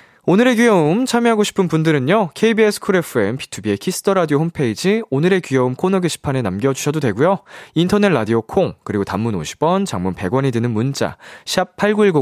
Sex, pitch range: male, 130-190 Hz